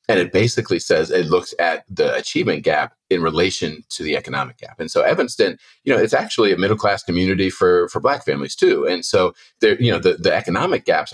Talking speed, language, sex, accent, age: 220 wpm, English, male, American, 40-59